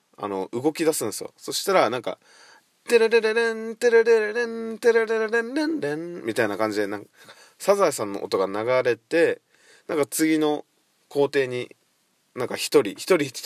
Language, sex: Japanese, male